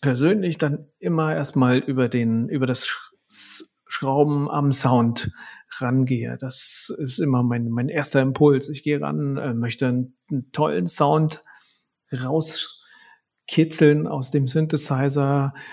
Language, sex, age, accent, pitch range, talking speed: German, male, 40-59, German, 135-160 Hz, 120 wpm